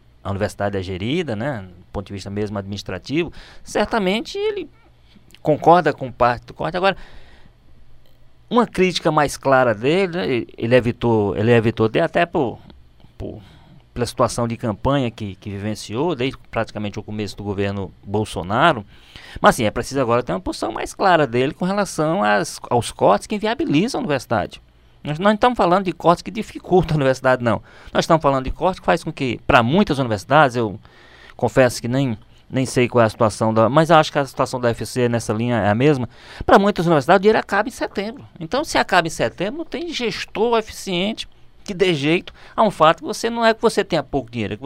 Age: 20-39